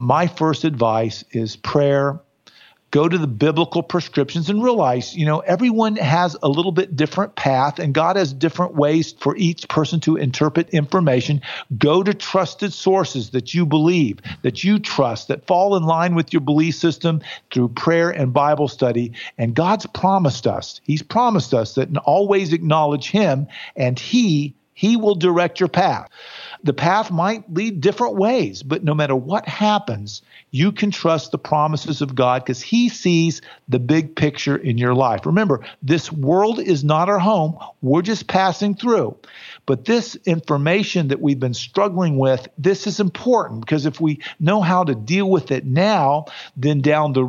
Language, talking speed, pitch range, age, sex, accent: English, 170 wpm, 140-180 Hz, 50-69, male, American